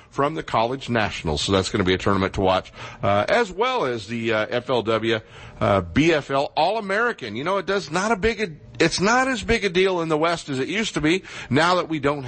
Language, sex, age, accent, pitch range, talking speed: English, male, 50-69, American, 105-140 Hz, 240 wpm